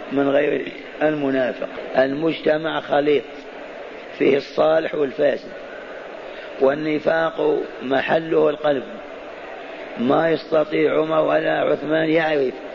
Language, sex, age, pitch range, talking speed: Arabic, male, 50-69, 150-165 Hz, 80 wpm